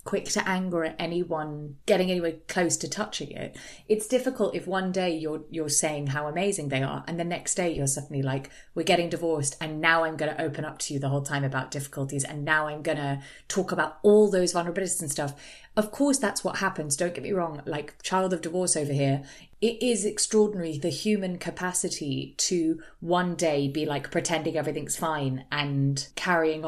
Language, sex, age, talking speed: English, female, 30-49, 200 wpm